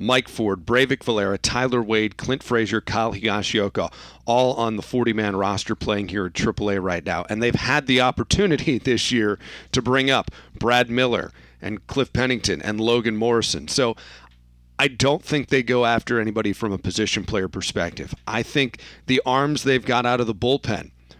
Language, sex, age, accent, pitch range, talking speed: English, male, 40-59, American, 105-125 Hz, 175 wpm